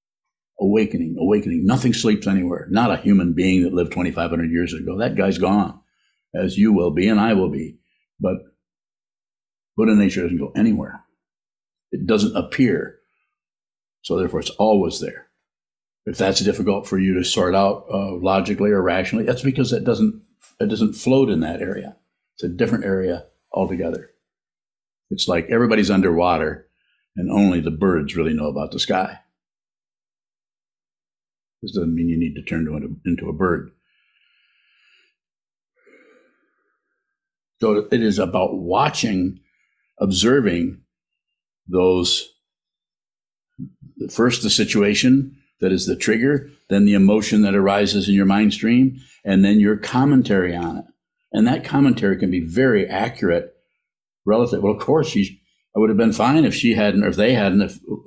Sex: male